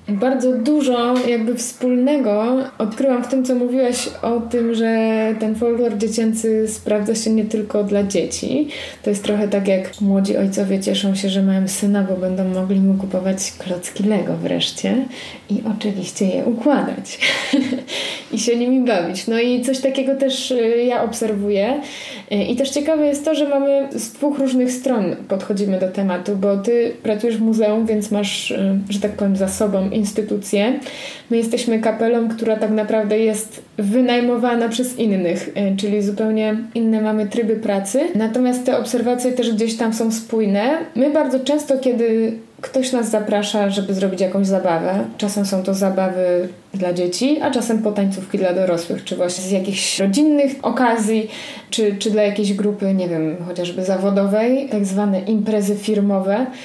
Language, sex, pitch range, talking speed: Polish, female, 200-250 Hz, 160 wpm